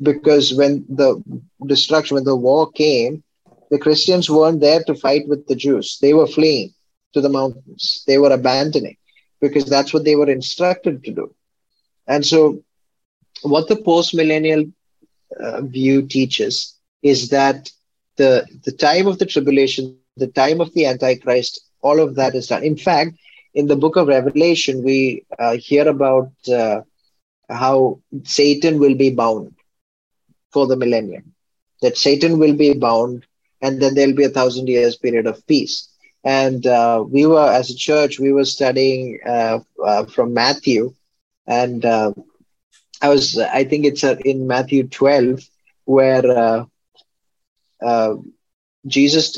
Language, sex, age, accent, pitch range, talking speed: English, male, 20-39, Indian, 130-150 Hz, 150 wpm